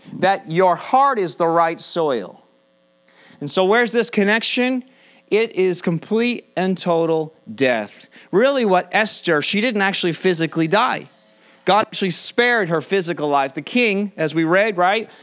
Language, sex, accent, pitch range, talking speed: English, male, American, 155-215 Hz, 150 wpm